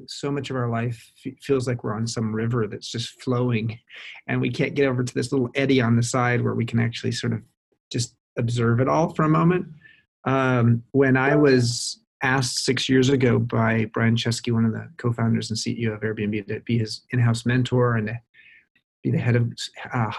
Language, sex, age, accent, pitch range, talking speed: English, male, 30-49, American, 115-130 Hz, 205 wpm